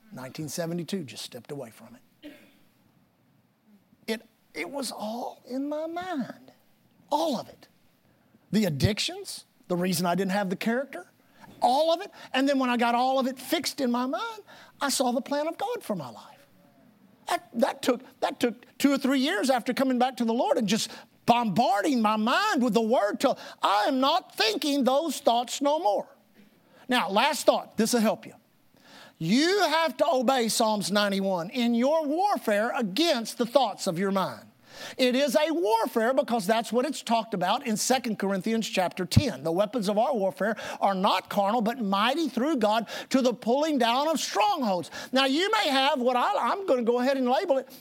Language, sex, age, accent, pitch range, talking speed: English, male, 50-69, American, 220-285 Hz, 185 wpm